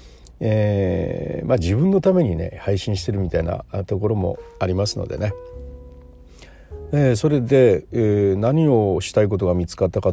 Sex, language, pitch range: male, Japanese, 85-125 Hz